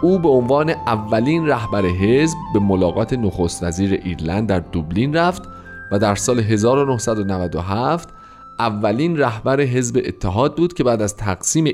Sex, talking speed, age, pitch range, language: male, 140 wpm, 40-59, 95-145 Hz, Persian